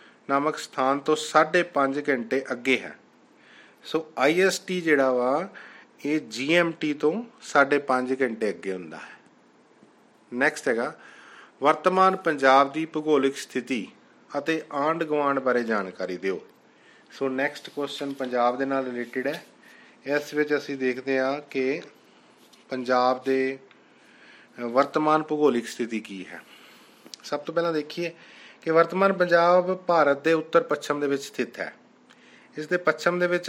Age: 30-49